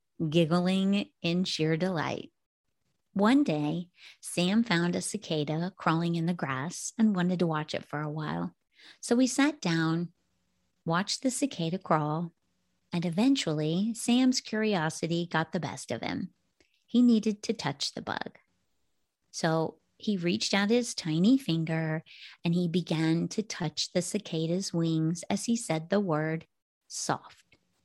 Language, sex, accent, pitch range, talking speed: English, female, American, 160-205 Hz, 140 wpm